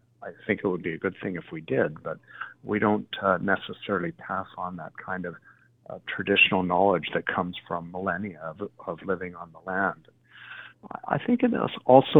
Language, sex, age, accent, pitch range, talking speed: English, male, 50-69, American, 100-130 Hz, 190 wpm